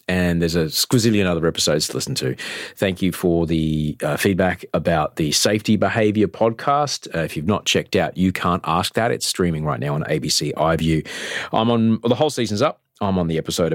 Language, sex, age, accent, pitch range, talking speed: English, male, 30-49, Australian, 85-125 Hz, 210 wpm